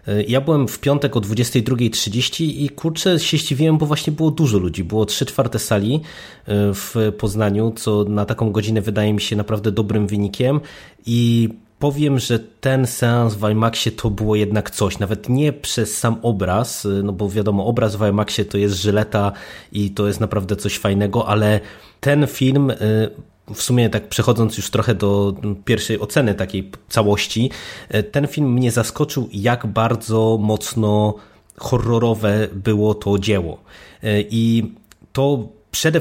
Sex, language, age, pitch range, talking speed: male, Polish, 20-39, 105-120 Hz, 150 wpm